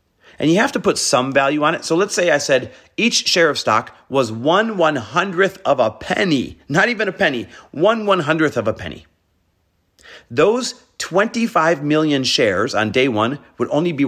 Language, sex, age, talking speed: English, male, 40-59, 185 wpm